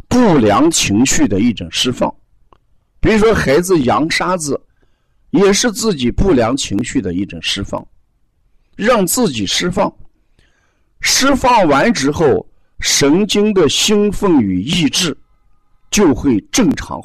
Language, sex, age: Chinese, male, 50-69